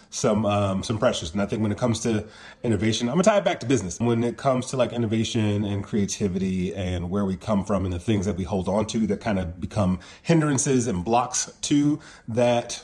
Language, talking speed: English, 230 wpm